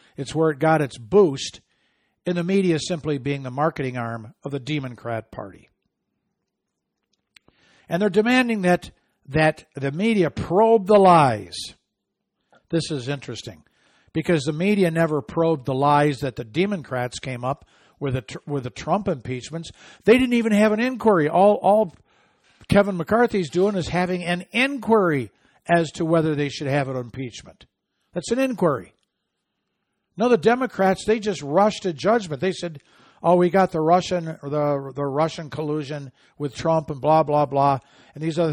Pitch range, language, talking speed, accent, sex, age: 140-190 Hz, English, 160 wpm, American, male, 60-79